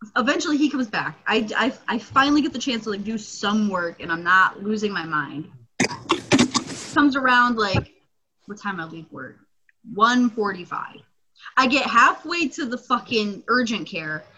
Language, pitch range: English, 215-290 Hz